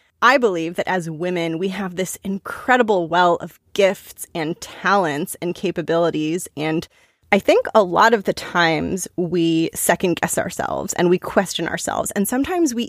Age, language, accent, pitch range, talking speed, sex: 20-39, English, American, 170-205 Hz, 165 wpm, female